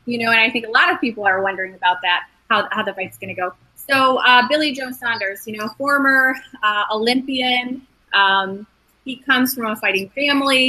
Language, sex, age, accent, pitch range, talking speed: English, female, 30-49, American, 215-265 Hz, 190 wpm